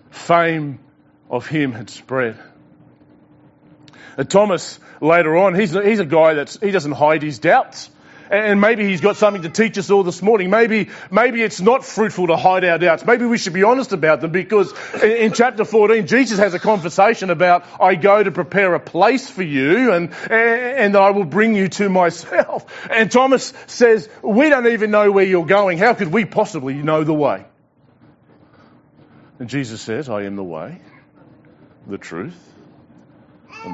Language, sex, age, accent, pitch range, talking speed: English, male, 30-49, Australian, 145-210 Hz, 180 wpm